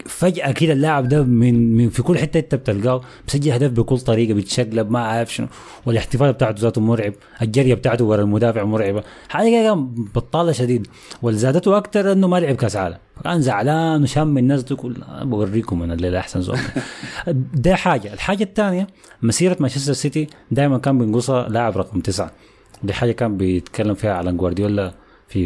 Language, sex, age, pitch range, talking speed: Arabic, male, 20-39, 105-140 Hz, 165 wpm